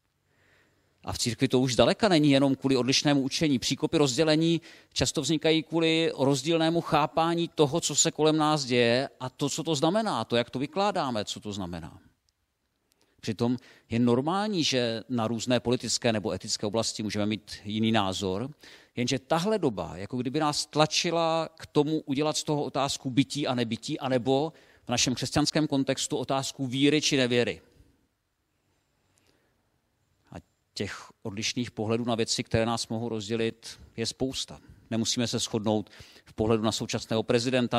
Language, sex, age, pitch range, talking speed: Czech, male, 40-59, 110-145 Hz, 150 wpm